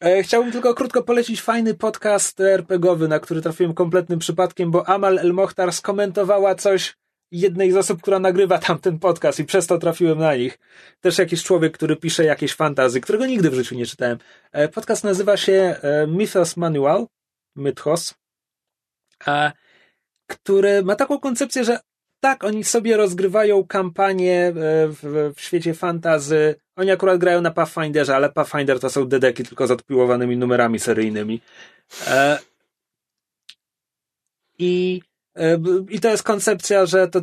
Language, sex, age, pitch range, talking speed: Polish, male, 30-49, 155-195 Hz, 140 wpm